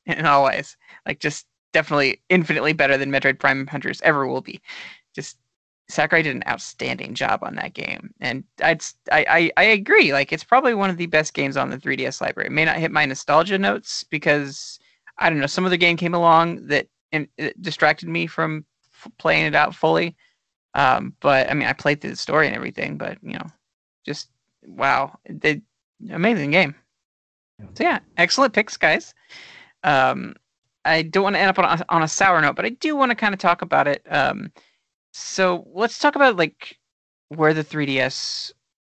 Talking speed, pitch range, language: 190 wpm, 140-175 Hz, English